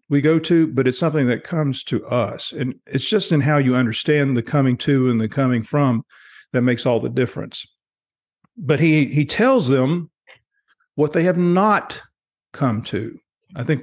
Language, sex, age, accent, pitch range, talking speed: English, male, 50-69, American, 125-150 Hz, 180 wpm